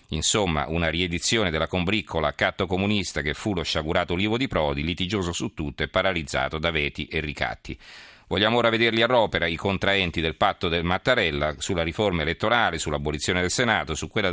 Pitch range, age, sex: 80-100 Hz, 40-59, male